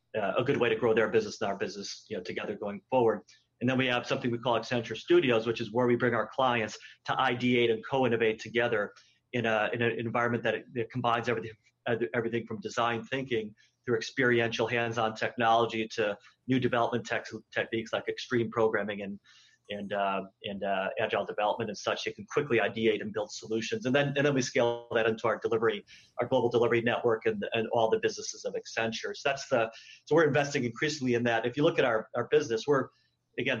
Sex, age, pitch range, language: male, 30-49, 110-130 Hz, English